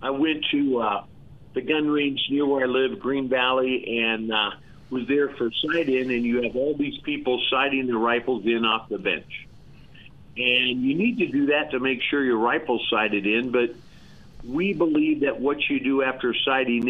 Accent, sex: American, male